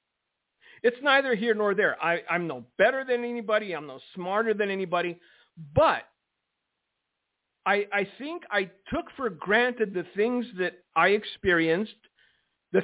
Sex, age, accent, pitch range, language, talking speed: male, 50-69, American, 180-230 Hz, English, 135 wpm